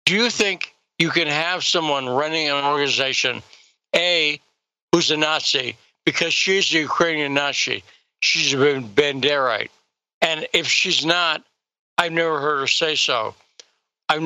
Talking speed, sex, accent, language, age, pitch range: 140 wpm, male, American, English, 60-79, 140-170 Hz